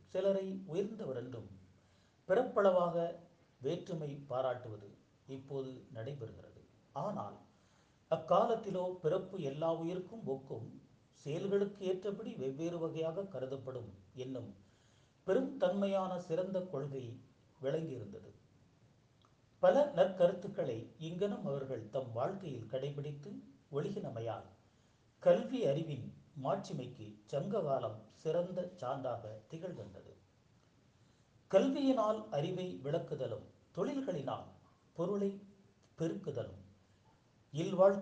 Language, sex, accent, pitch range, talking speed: Tamil, male, native, 120-185 Hz, 70 wpm